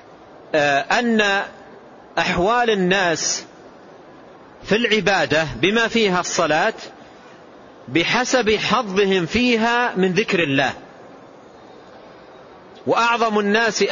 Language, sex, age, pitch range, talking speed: Arabic, male, 40-59, 190-230 Hz, 70 wpm